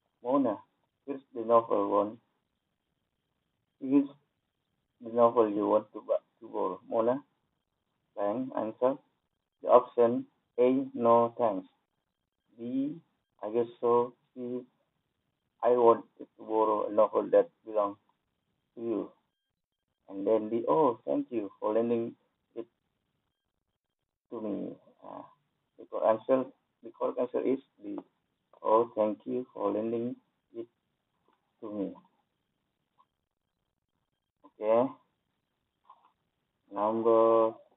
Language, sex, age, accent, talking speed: Indonesian, male, 50-69, Indian, 105 wpm